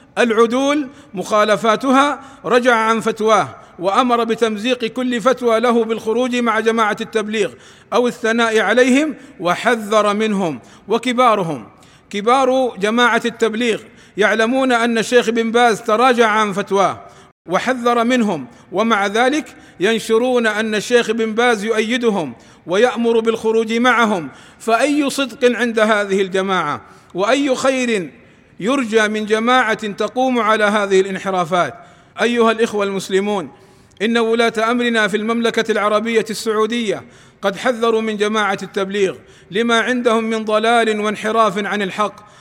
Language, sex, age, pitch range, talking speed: Arabic, male, 50-69, 205-235 Hz, 115 wpm